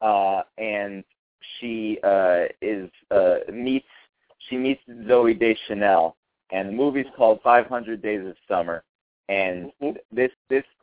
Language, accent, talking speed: English, American, 125 wpm